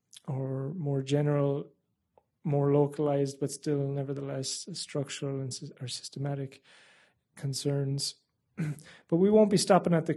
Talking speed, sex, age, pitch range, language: 120 wpm, male, 30-49, 135-155 Hz, English